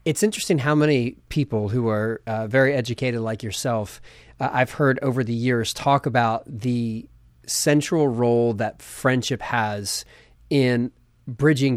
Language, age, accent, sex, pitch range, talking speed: English, 30-49, American, male, 115-140 Hz, 145 wpm